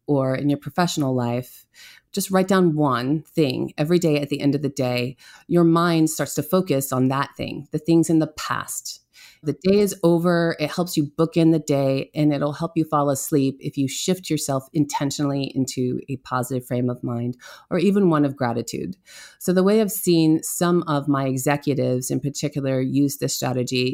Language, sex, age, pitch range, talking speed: English, female, 30-49, 140-185 Hz, 195 wpm